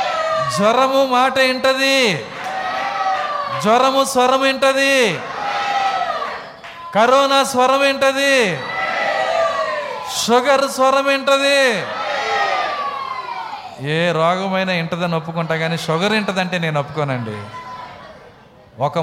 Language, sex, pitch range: Telugu, male, 165-260 Hz